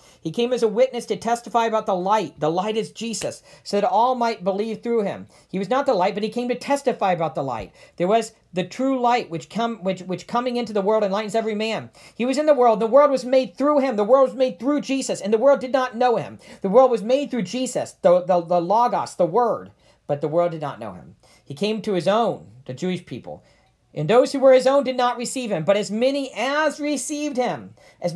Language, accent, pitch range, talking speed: English, American, 185-265 Hz, 250 wpm